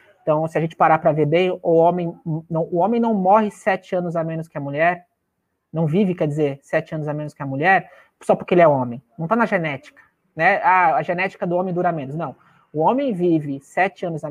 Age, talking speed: 20-39, 240 wpm